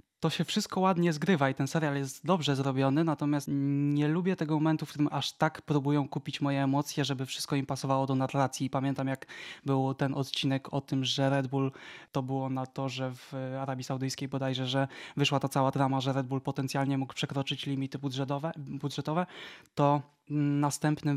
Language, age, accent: Polish, 20-39, native